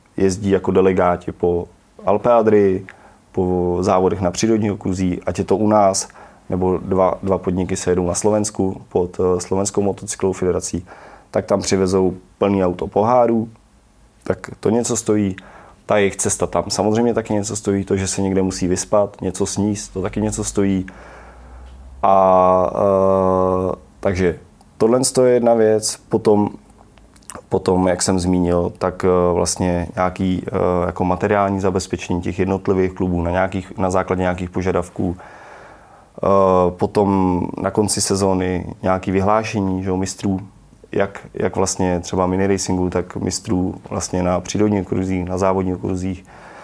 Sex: male